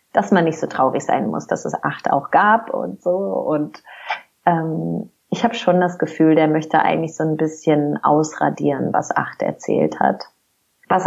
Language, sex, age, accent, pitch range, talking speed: German, female, 30-49, German, 170-200 Hz, 180 wpm